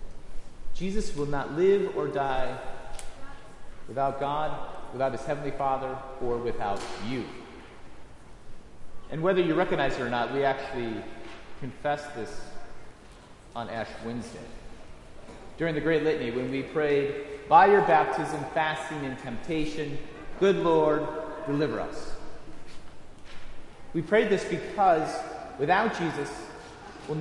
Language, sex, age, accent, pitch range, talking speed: English, male, 40-59, American, 125-155 Hz, 115 wpm